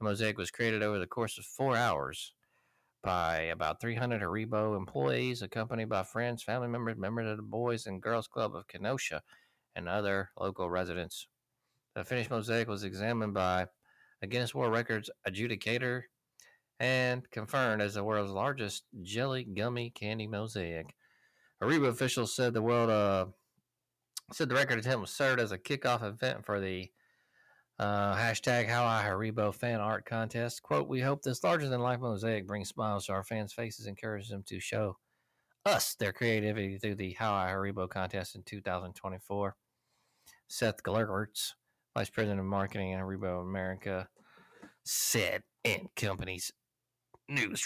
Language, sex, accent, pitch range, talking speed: English, male, American, 100-120 Hz, 155 wpm